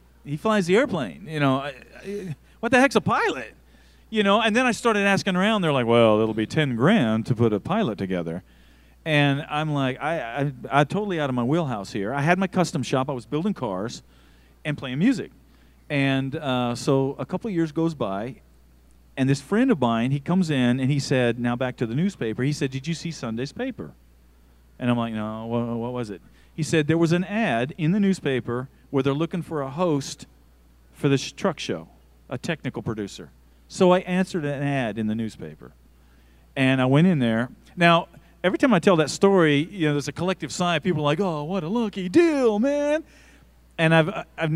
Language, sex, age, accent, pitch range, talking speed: English, male, 40-59, American, 115-180 Hz, 210 wpm